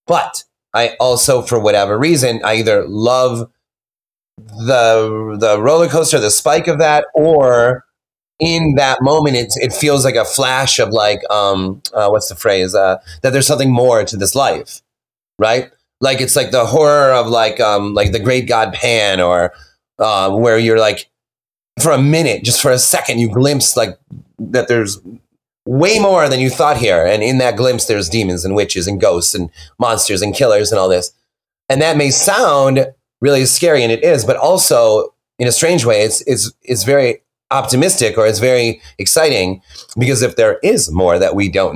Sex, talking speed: male, 185 wpm